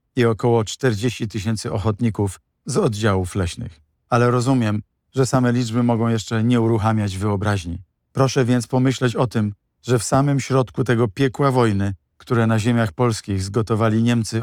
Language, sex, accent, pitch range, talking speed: Polish, male, native, 110-125 Hz, 150 wpm